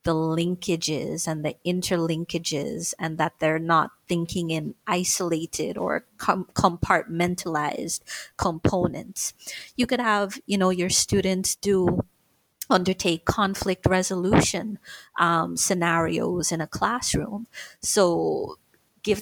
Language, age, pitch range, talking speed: English, 30-49, 175-215 Hz, 105 wpm